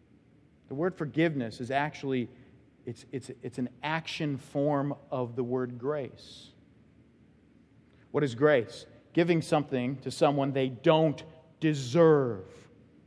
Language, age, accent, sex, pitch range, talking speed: English, 40-59, American, male, 125-170 Hz, 115 wpm